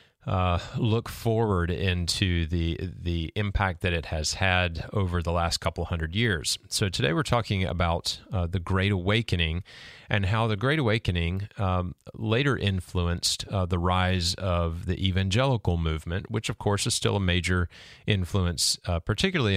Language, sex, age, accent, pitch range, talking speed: English, male, 30-49, American, 90-110 Hz, 155 wpm